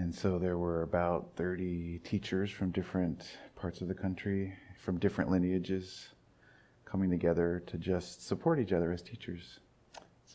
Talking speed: 150 wpm